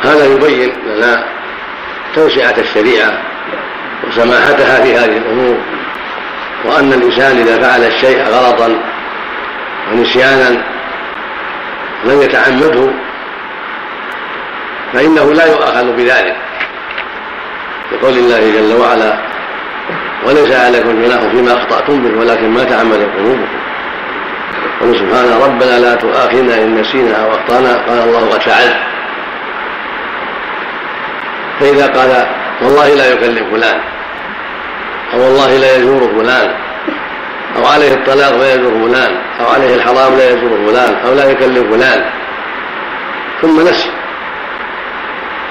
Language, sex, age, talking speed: Arabic, male, 50-69, 100 wpm